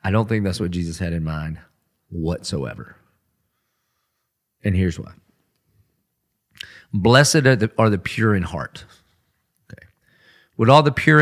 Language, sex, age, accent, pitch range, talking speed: English, male, 40-59, American, 100-135 Hz, 140 wpm